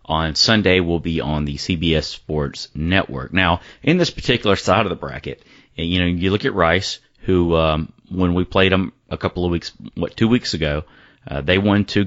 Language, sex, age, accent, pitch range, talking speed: English, male, 30-49, American, 85-105 Hz, 205 wpm